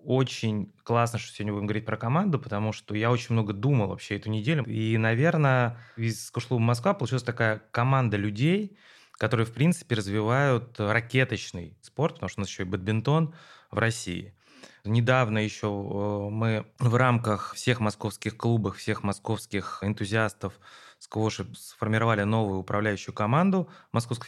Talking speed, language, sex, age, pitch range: 145 wpm, Russian, male, 20-39, 100-120 Hz